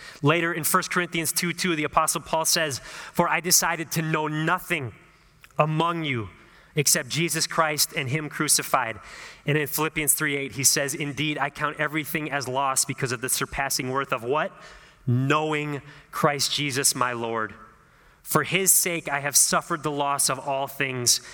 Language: English